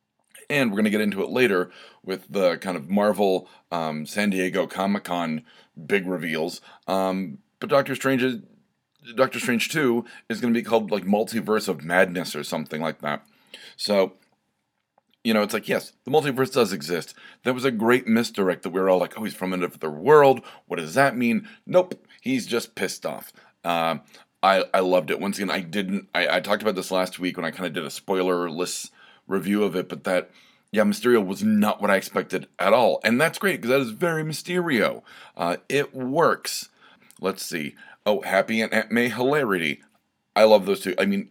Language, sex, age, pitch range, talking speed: English, male, 30-49, 90-130 Hz, 200 wpm